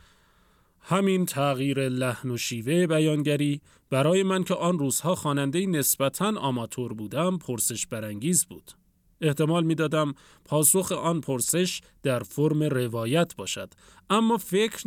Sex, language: male, Persian